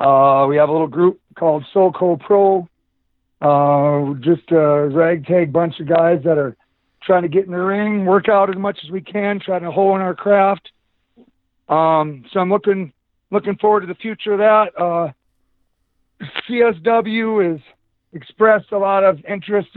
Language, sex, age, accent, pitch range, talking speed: English, male, 50-69, American, 155-195 Hz, 165 wpm